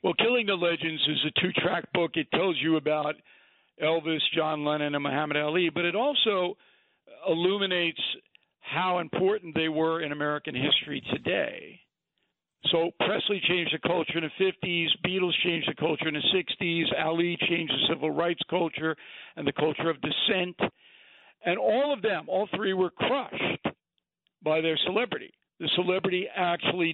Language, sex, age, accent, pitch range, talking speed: English, male, 60-79, American, 155-185 Hz, 155 wpm